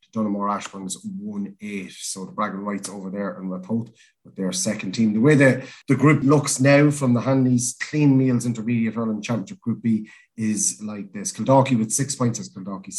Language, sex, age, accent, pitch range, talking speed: English, male, 30-49, Irish, 105-140 Hz, 210 wpm